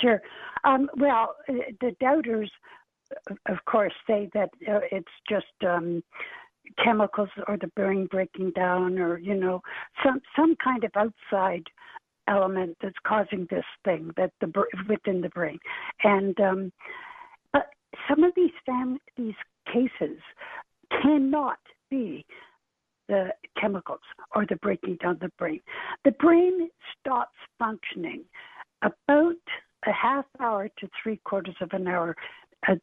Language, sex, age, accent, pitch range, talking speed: English, female, 60-79, American, 195-285 Hz, 130 wpm